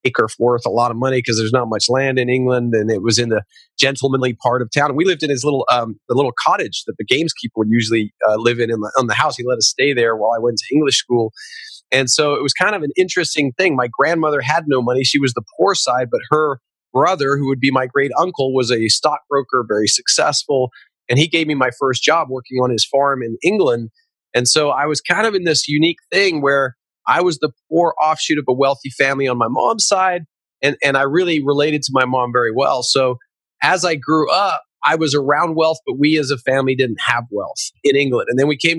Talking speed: 245 wpm